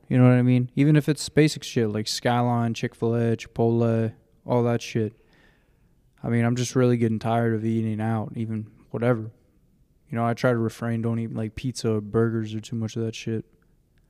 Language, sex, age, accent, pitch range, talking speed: English, male, 20-39, American, 110-125 Hz, 195 wpm